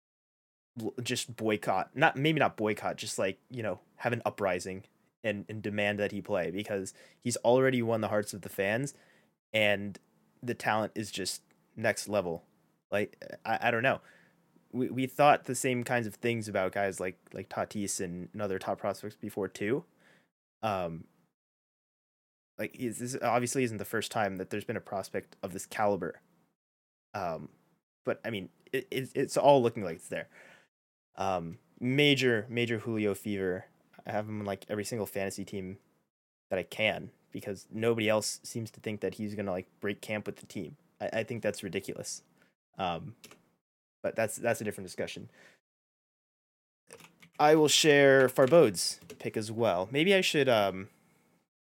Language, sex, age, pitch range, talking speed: English, male, 20-39, 100-120 Hz, 165 wpm